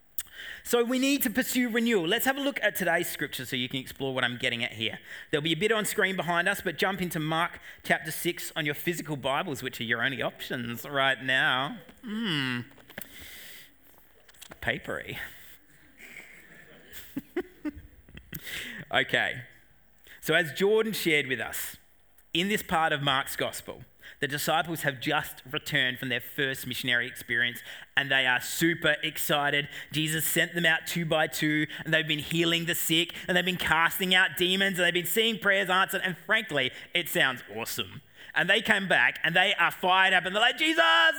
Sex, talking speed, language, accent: male, 175 wpm, English, Australian